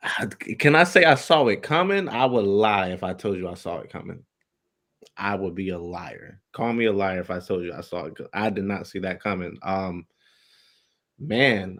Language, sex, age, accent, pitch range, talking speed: English, male, 20-39, American, 100-135 Hz, 215 wpm